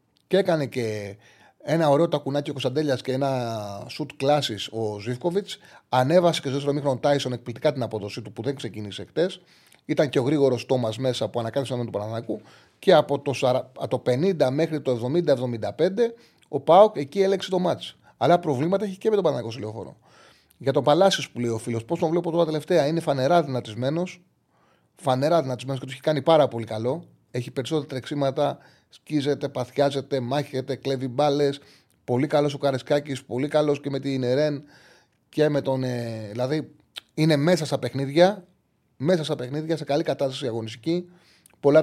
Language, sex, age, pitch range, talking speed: Greek, male, 30-49, 120-155 Hz, 175 wpm